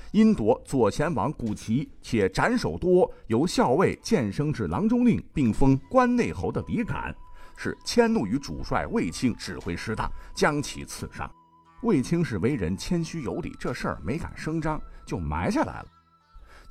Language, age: Chinese, 50-69